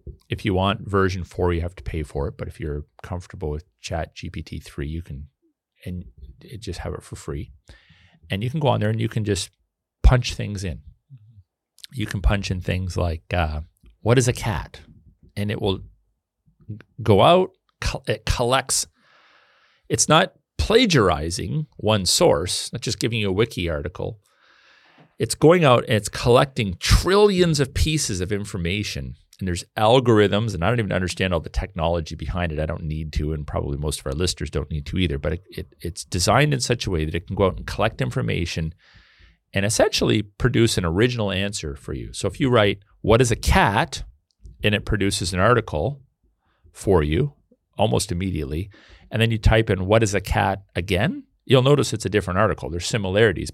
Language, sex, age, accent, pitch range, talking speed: English, male, 40-59, American, 85-110 Hz, 185 wpm